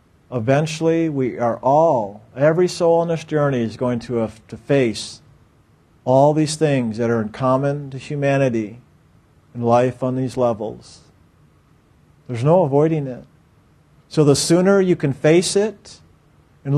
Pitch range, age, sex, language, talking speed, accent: 120-150 Hz, 50-69, male, English, 145 wpm, American